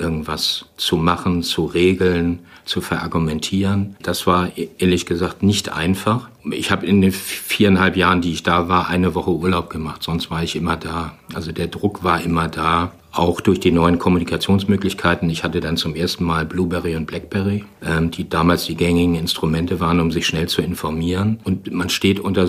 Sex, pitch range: male, 85-100 Hz